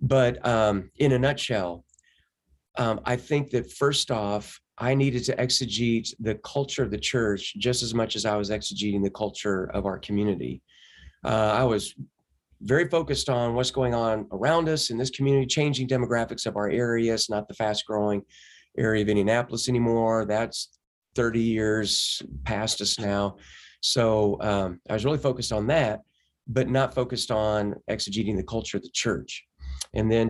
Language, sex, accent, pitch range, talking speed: English, male, American, 105-125 Hz, 170 wpm